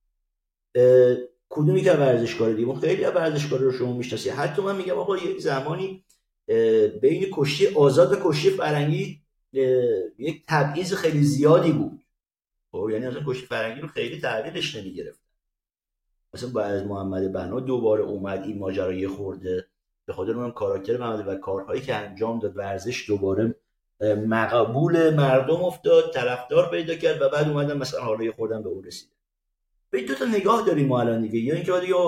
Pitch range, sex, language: 110-160 Hz, male, Persian